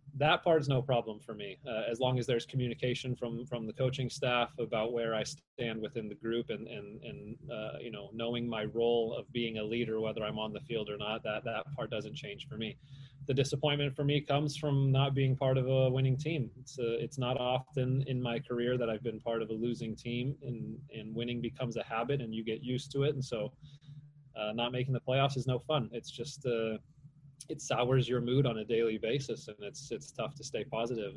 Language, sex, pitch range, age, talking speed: English, male, 115-140 Hz, 30-49, 230 wpm